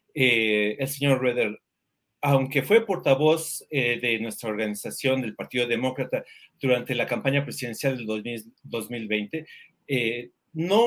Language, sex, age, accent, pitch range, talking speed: Spanish, male, 40-59, Mexican, 115-150 Hz, 120 wpm